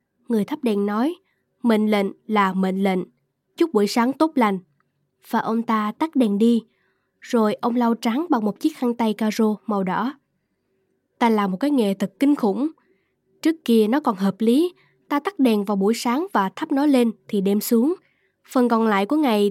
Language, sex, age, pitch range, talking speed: Vietnamese, female, 10-29, 205-270 Hz, 195 wpm